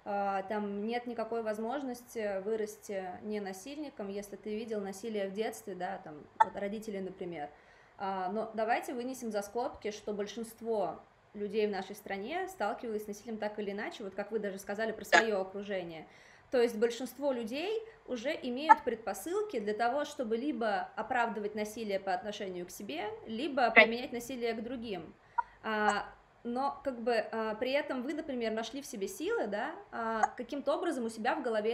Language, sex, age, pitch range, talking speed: Russian, female, 20-39, 210-260 Hz, 155 wpm